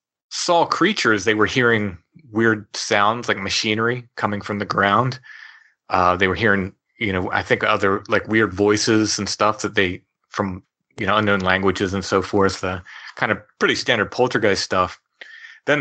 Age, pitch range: 30-49, 100-120 Hz